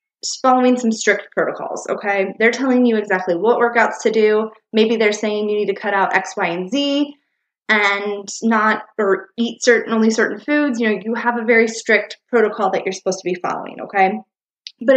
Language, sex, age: English, female, 20-39